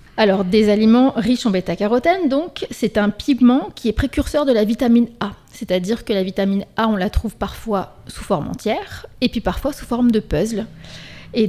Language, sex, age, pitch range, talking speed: French, female, 30-49, 200-245 Hz, 195 wpm